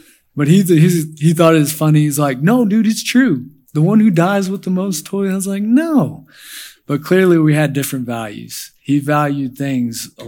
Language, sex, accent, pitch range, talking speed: English, male, American, 125-145 Hz, 210 wpm